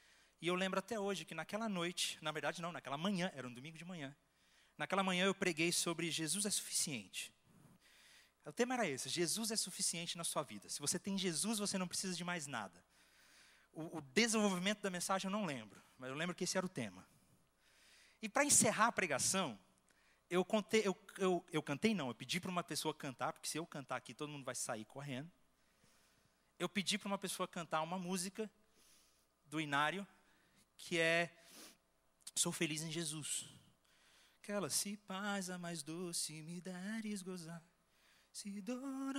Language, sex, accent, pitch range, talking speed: Portuguese, male, Brazilian, 150-210 Hz, 180 wpm